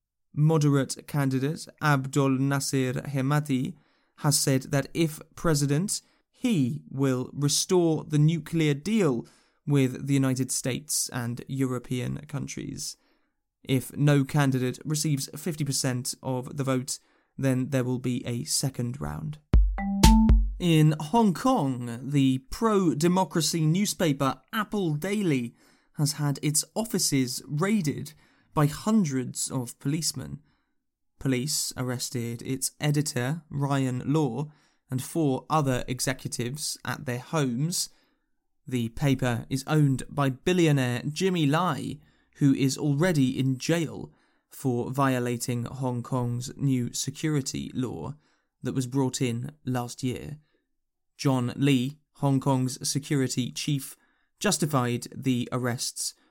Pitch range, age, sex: 130-155 Hz, 20-39, male